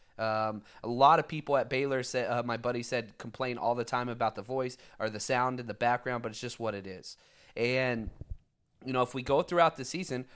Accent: American